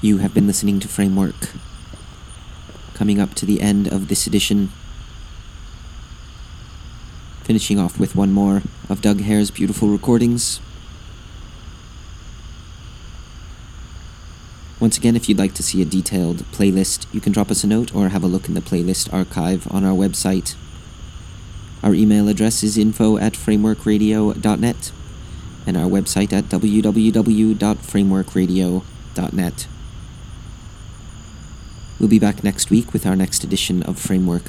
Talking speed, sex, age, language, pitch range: 130 wpm, male, 30-49, English, 95-110 Hz